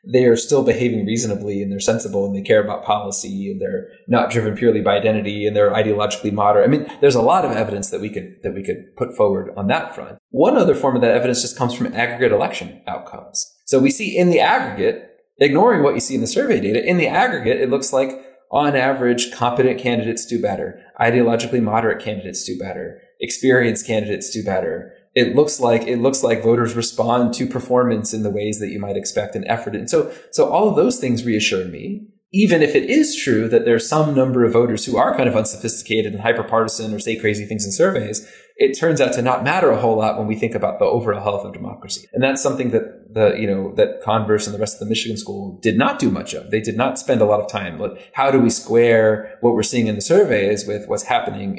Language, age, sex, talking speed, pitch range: English, 20-39, male, 235 wpm, 110-140 Hz